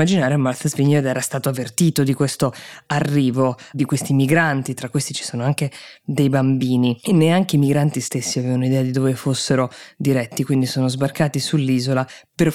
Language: Italian